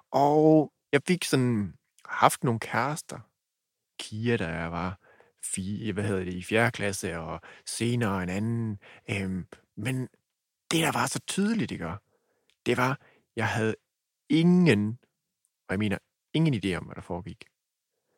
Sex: male